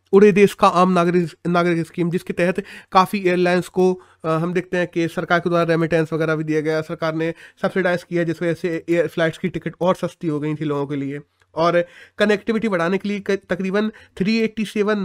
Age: 30-49